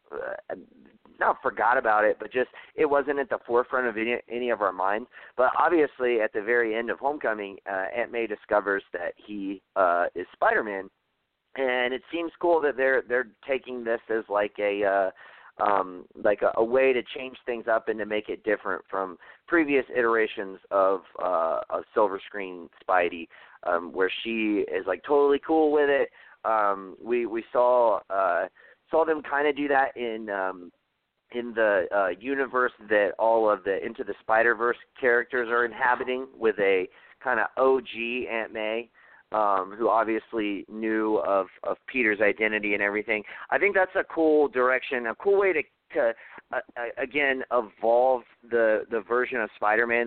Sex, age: male, 30-49